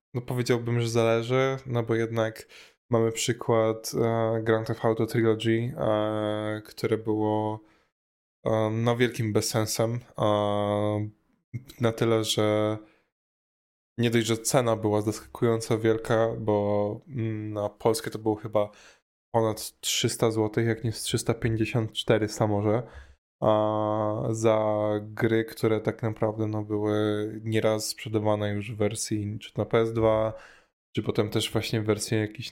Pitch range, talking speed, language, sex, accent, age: 105-115 Hz, 120 wpm, Polish, male, native, 10-29